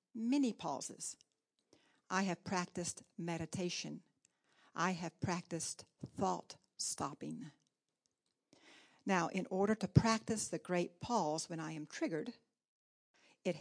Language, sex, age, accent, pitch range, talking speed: English, female, 60-79, American, 160-195 Hz, 105 wpm